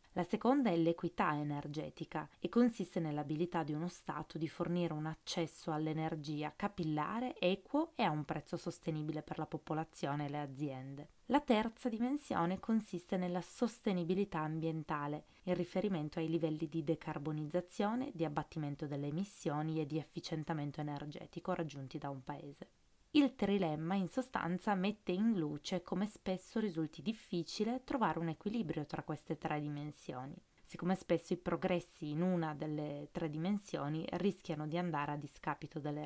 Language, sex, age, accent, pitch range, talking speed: Italian, female, 20-39, native, 155-195 Hz, 145 wpm